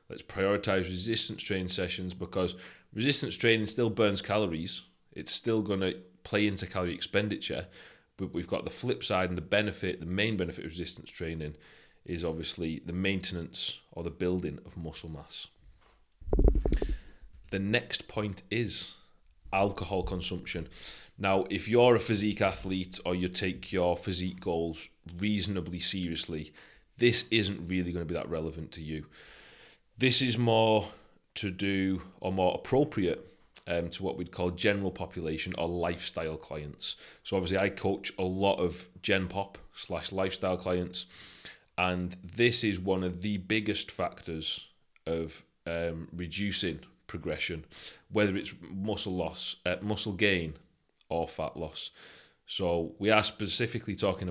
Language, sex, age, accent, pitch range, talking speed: English, male, 30-49, British, 85-100 Hz, 145 wpm